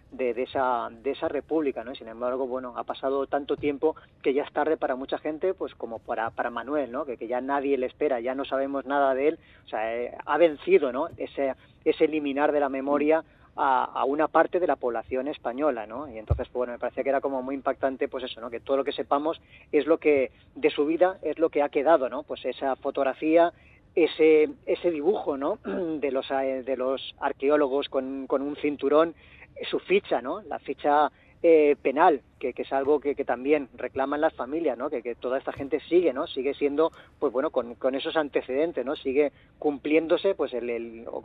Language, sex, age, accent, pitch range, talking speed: Spanish, female, 30-49, Spanish, 130-155 Hz, 215 wpm